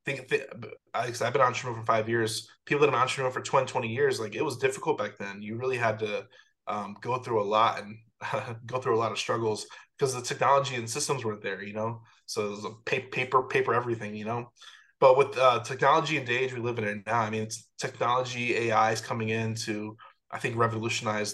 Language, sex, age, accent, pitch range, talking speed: English, male, 20-39, American, 110-130 Hz, 220 wpm